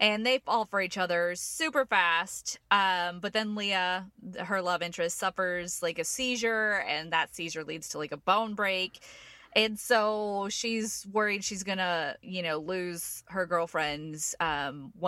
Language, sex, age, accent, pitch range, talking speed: English, female, 20-39, American, 175-225 Hz, 165 wpm